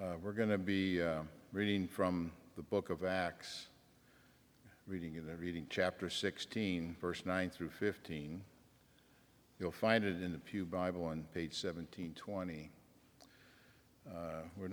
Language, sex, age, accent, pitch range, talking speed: English, male, 50-69, American, 85-100 Hz, 130 wpm